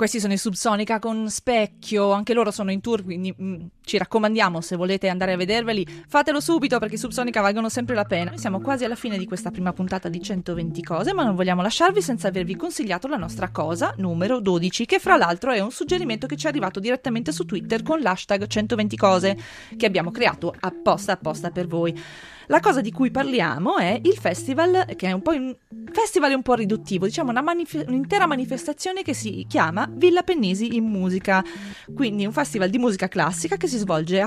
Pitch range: 180-250 Hz